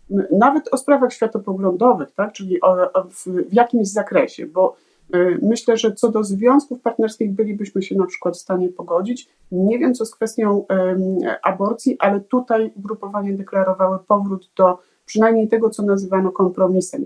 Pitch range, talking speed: 190-240 Hz, 160 wpm